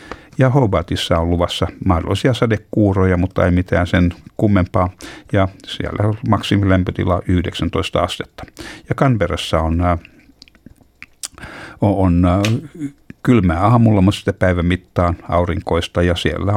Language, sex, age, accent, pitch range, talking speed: Finnish, male, 60-79, native, 90-105 Hz, 110 wpm